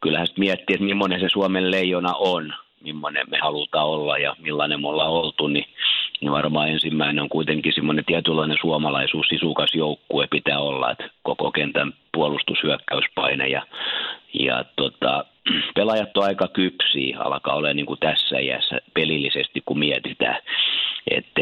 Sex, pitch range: male, 75-90 Hz